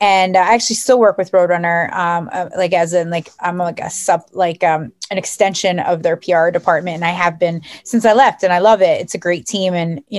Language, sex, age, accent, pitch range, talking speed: English, female, 20-39, American, 175-215 Hz, 245 wpm